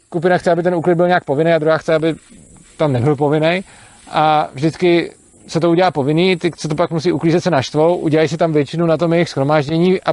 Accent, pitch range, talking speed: native, 160-180 Hz, 225 wpm